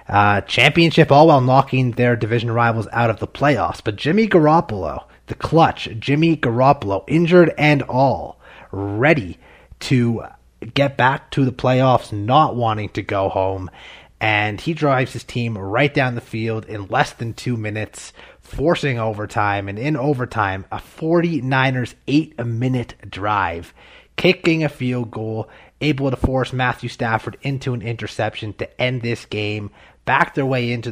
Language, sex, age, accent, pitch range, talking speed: English, male, 30-49, American, 110-135 Hz, 150 wpm